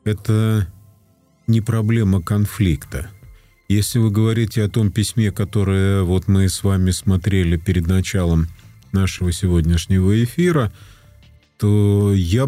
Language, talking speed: Russian, 110 wpm